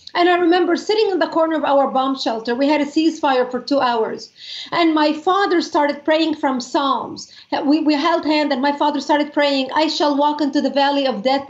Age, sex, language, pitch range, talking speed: 40-59, female, English, 280-340 Hz, 220 wpm